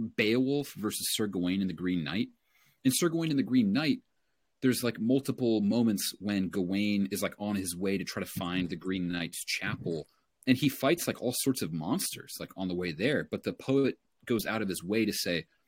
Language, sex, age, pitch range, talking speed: English, male, 30-49, 90-125 Hz, 220 wpm